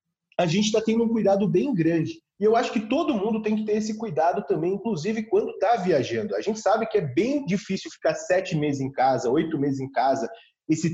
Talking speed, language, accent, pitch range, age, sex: 225 wpm, Portuguese, Brazilian, 170-225 Hz, 40-59, male